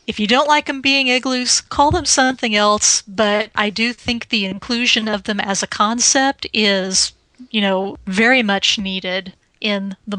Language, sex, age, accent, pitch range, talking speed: English, female, 30-49, American, 205-245 Hz, 175 wpm